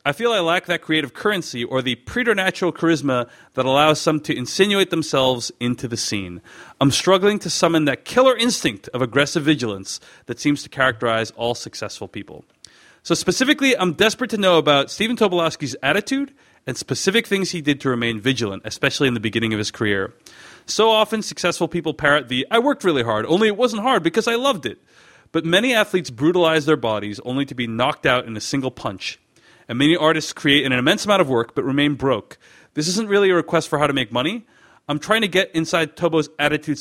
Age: 30-49